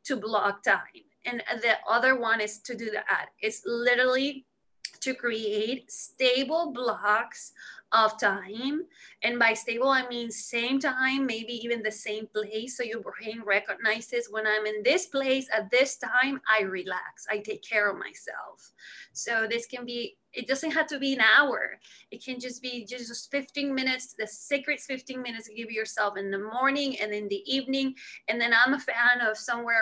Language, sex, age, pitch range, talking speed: English, female, 20-39, 225-275 Hz, 180 wpm